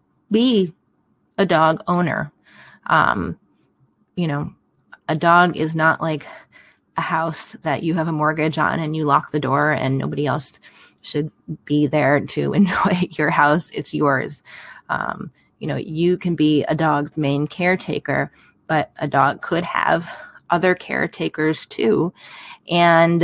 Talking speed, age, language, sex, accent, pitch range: 145 wpm, 20-39, English, female, American, 160-195 Hz